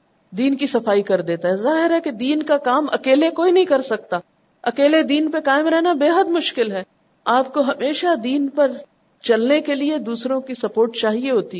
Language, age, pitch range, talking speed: Urdu, 50-69, 225-310 Hz, 200 wpm